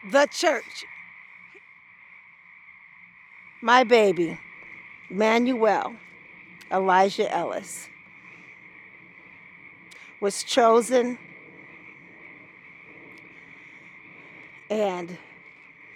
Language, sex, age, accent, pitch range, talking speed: English, female, 50-69, American, 175-245 Hz, 40 wpm